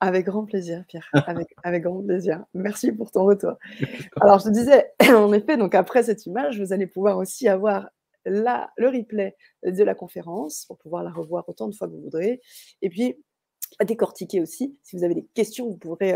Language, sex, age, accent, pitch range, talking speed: French, female, 30-49, French, 180-225 Hz, 205 wpm